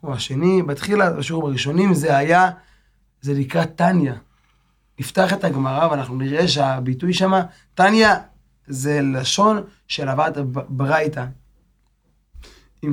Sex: male